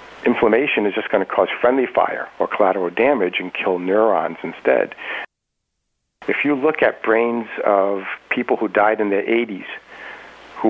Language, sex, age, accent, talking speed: English, male, 60-79, American, 155 wpm